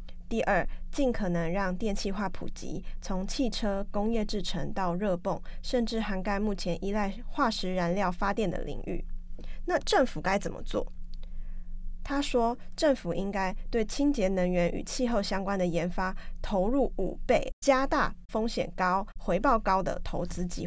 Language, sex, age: Chinese, female, 20-39